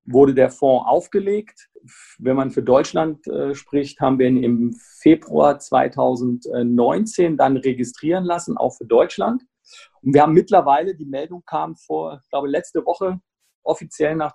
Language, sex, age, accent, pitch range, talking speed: German, male, 40-59, German, 130-165 Hz, 150 wpm